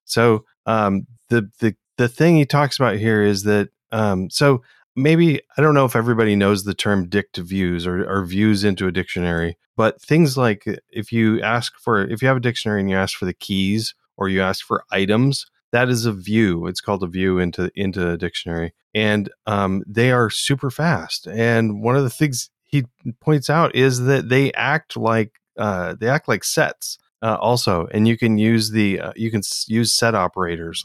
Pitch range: 95-125 Hz